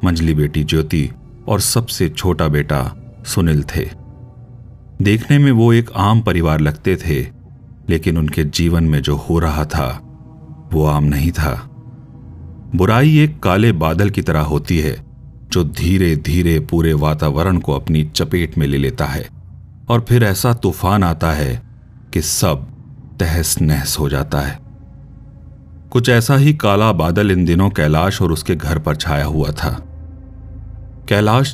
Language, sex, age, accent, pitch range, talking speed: Hindi, male, 40-59, native, 80-115 Hz, 150 wpm